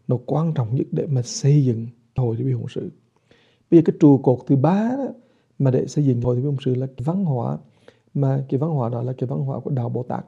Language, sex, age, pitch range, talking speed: English, male, 60-79, 125-145 Hz, 275 wpm